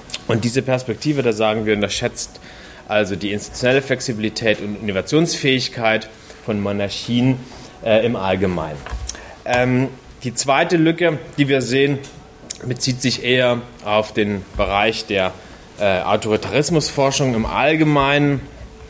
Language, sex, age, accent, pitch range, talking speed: German, male, 30-49, German, 105-125 Hz, 115 wpm